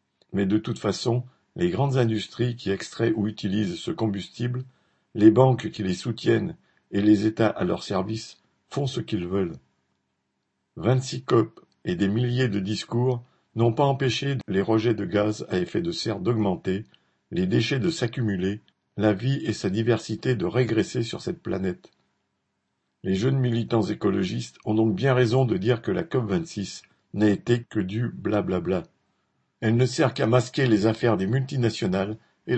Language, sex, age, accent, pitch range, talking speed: French, male, 50-69, French, 100-125 Hz, 165 wpm